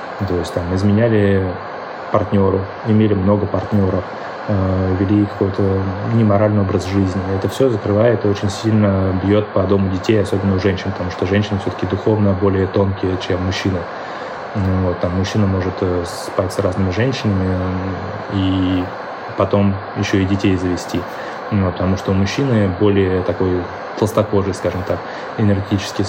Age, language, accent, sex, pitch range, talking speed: 20-39, Russian, native, male, 95-110 Hz, 140 wpm